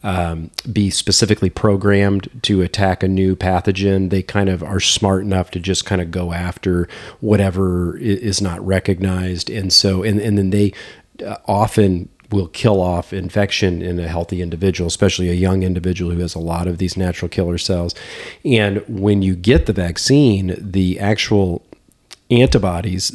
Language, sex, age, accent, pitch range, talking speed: English, male, 40-59, American, 95-110 Hz, 160 wpm